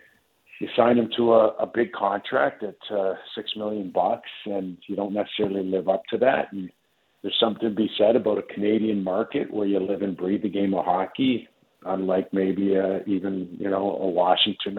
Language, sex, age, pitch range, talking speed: English, male, 50-69, 100-125 Hz, 195 wpm